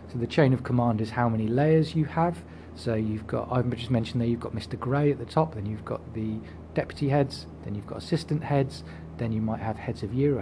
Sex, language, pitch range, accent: male, English, 115-140 Hz, British